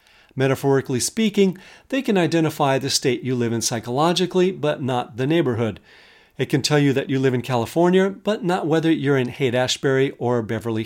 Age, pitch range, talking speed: 50-69, 125-170 Hz, 175 wpm